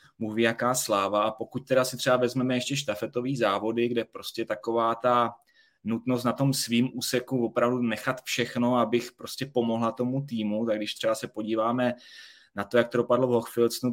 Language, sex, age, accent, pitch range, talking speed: Czech, male, 20-39, native, 115-140 Hz, 175 wpm